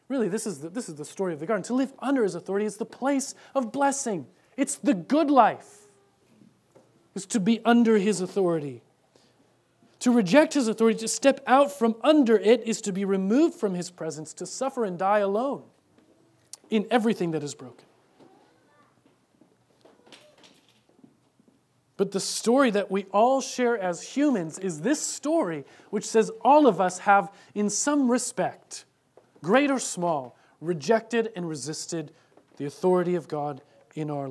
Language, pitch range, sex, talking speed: English, 160-230 Hz, male, 155 wpm